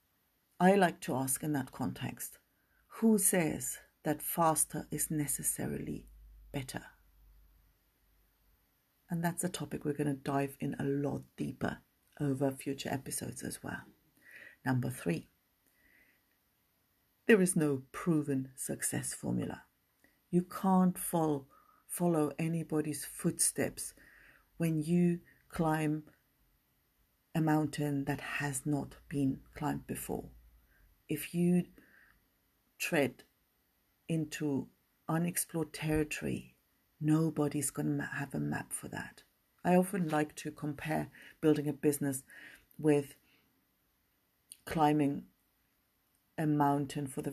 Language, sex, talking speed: English, female, 105 wpm